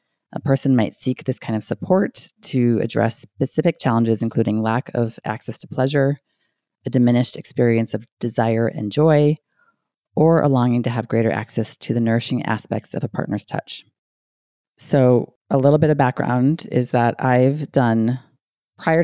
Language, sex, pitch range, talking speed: English, female, 115-135 Hz, 160 wpm